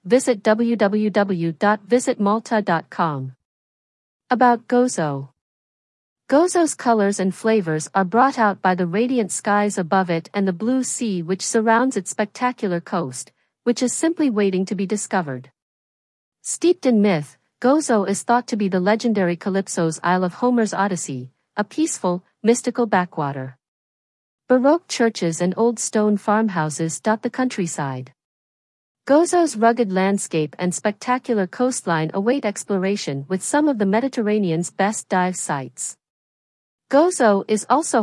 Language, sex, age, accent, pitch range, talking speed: English, female, 50-69, American, 170-235 Hz, 125 wpm